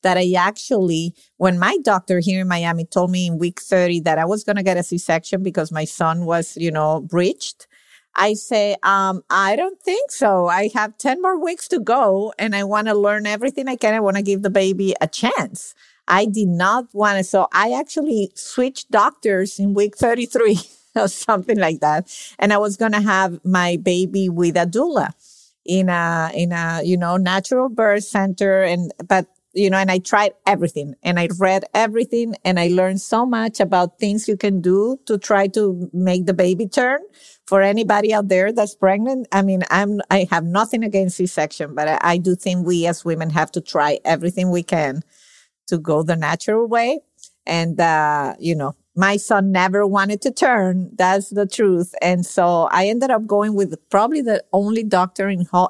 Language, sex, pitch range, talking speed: English, female, 175-210 Hz, 200 wpm